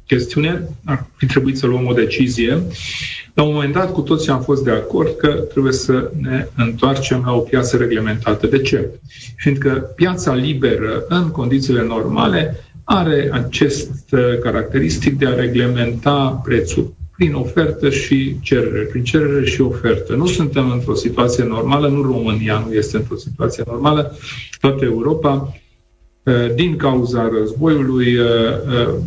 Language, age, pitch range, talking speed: Romanian, 40-59, 120-140 Hz, 135 wpm